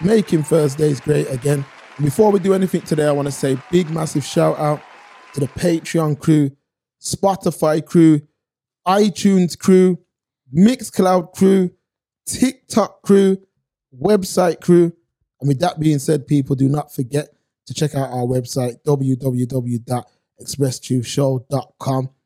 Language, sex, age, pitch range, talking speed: English, male, 20-39, 145-185 Hz, 125 wpm